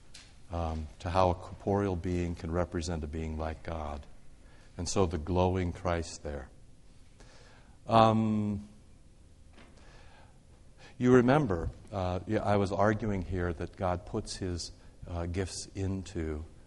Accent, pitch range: American, 85-100 Hz